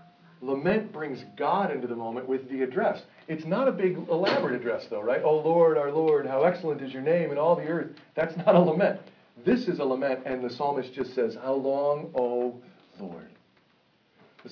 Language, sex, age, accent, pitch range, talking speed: English, male, 40-59, American, 140-200 Hz, 200 wpm